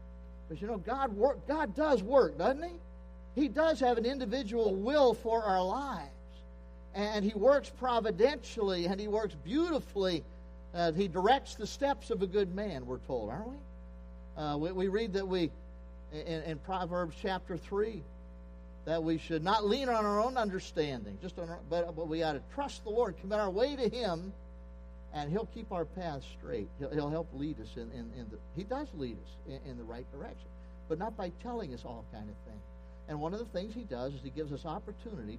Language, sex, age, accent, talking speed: English, male, 50-69, American, 205 wpm